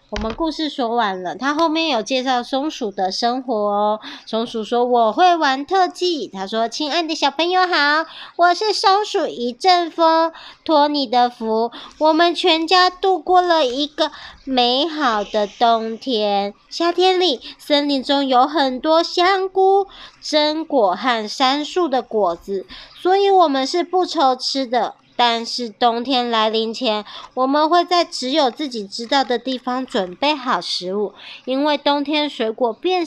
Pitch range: 230-320 Hz